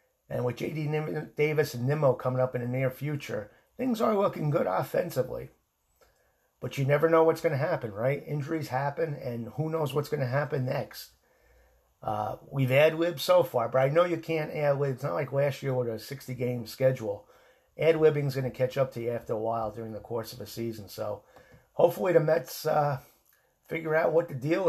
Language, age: English, 50-69